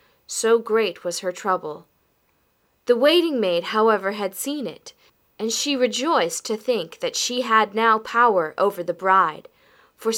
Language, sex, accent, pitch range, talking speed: English, female, American, 200-305 Hz, 145 wpm